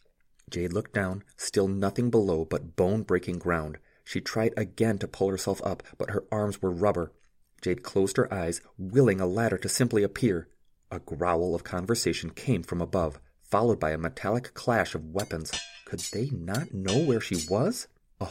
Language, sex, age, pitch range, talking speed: English, male, 30-49, 90-120 Hz, 175 wpm